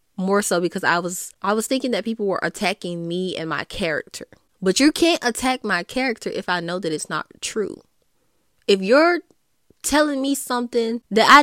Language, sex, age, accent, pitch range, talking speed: English, female, 20-39, American, 185-245 Hz, 190 wpm